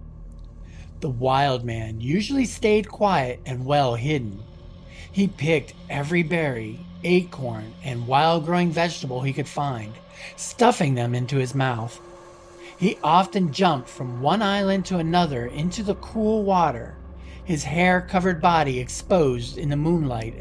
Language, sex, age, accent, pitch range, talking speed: English, male, 40-59, American, 120-180 Hz, 135 wpm